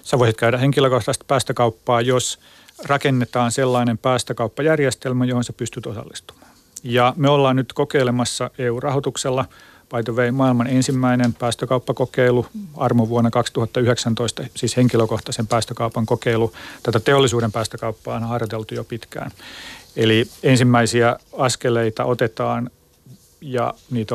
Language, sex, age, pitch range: Finnish, male, 40-59, 115-130 Hz